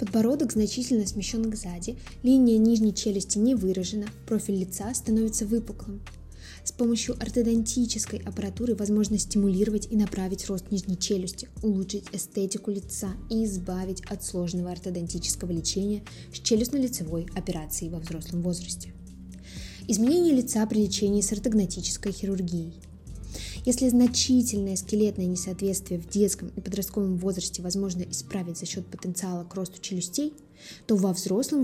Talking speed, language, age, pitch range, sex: 125 wpm, Russian, 20-39, 185-225 Hz, female